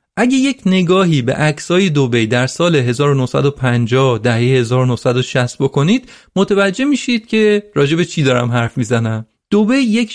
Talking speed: 130 wpm